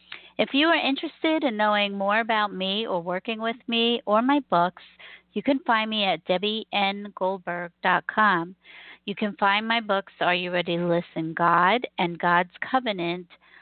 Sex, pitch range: female, 180-215 Hz